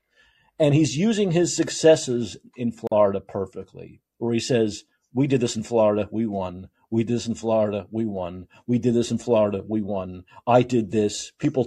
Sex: male